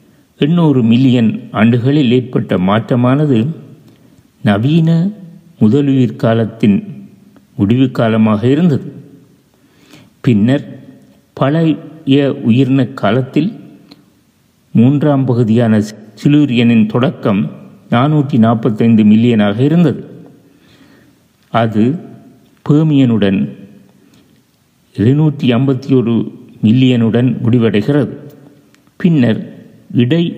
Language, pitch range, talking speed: Tamil, 115-150 Hz, 60 wpm